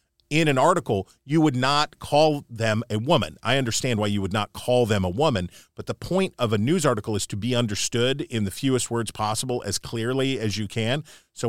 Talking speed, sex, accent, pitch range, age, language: 220 wpm, male, American, 100-125 Hz, 40-59, English